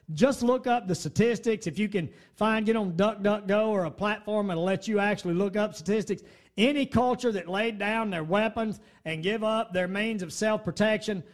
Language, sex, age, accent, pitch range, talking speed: English, male, 40-59, American, 185-230 Hz, 195 wpm